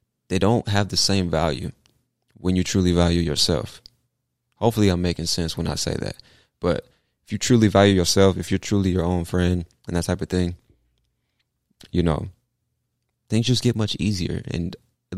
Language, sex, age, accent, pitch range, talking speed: English, male, 20-39, American, 90-115 Hz, 180 wpm